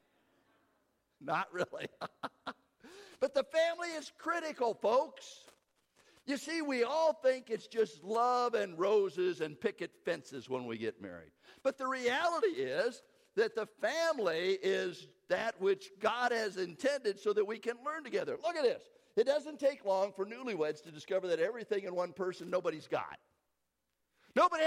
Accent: American